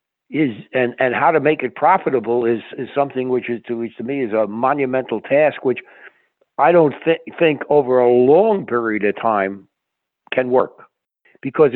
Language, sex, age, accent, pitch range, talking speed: English, male, 60-79, American, 125-155 Hz, 180 wpm